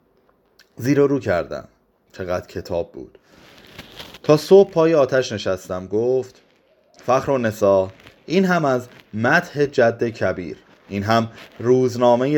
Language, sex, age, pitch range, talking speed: Persian, male, 30-49, 105-140 Hz, 115 wpm